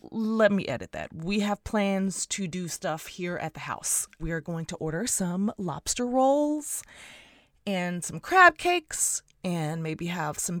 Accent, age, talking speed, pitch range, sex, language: American, 20-39, 170 wpm, 155-215 Hz, female, English